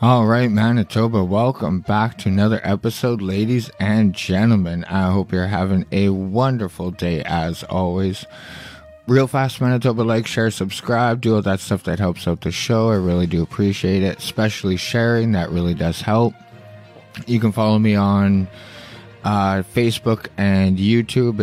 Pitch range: 95-115 Hz